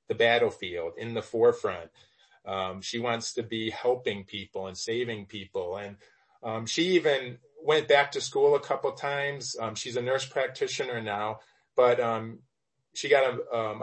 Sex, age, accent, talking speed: male, 30-49, American, 170 wpm